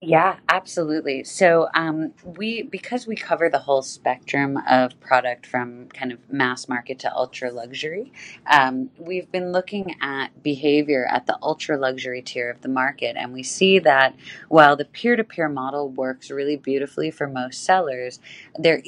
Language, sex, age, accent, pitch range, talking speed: English, female, 30-49, American, 130-160 Hz, 160 wpm